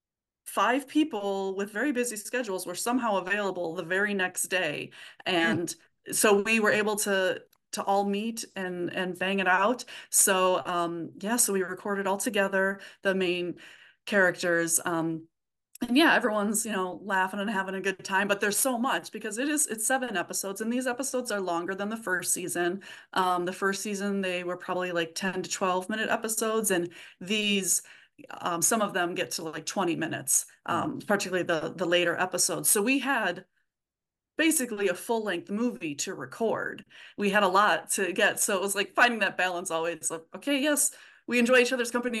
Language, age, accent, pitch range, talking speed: English, 30-49, American, 180-225 Hz, 185 wpm